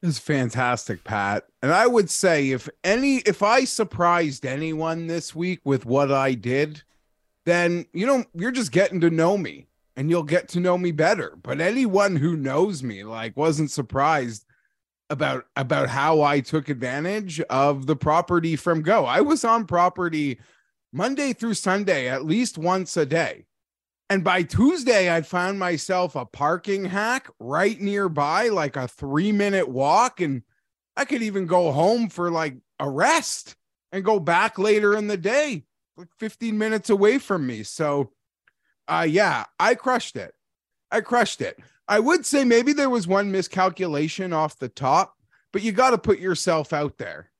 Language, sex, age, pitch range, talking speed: English, male, 30-49, 150-205 Hz, 170 wpm